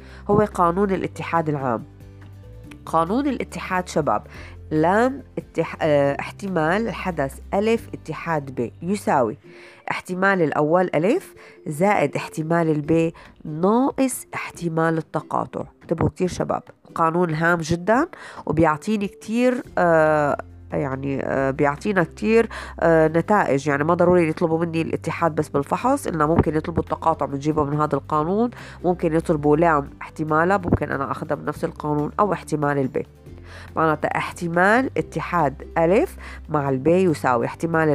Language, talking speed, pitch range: Arabic, 115 wpm, 150-200 Hz